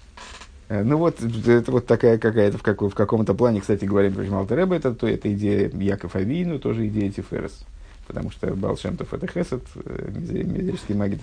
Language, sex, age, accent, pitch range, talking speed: Russian, male, 50-69, native, 100-135 Hz, 150 wpm